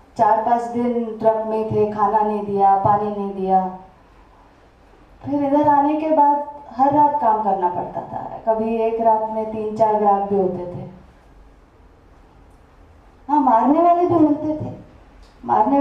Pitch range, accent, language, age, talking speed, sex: 200-255 Hz, Indian, English, 20-39, 145 wpm, female